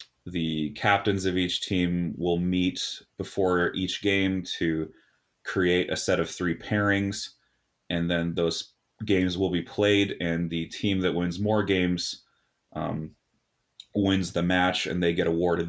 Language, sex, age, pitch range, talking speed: English, male, 30-49, 85-100 Hz, 150 wpm